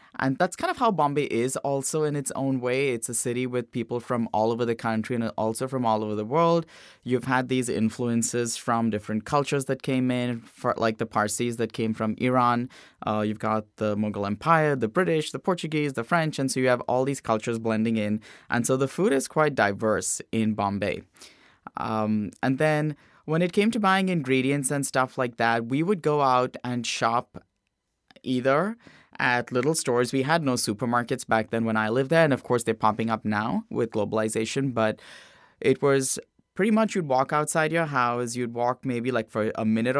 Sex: male